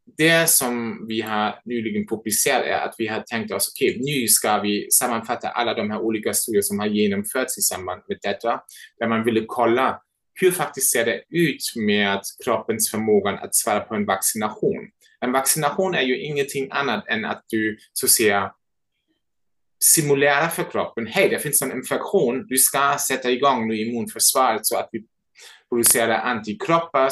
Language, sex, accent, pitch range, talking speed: Swedish, male, German, 110-140 Hz, 175 wpm